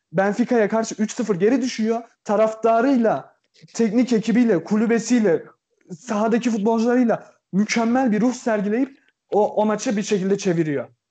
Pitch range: 195-245 Hz